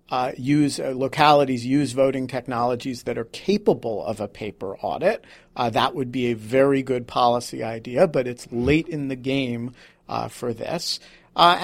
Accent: American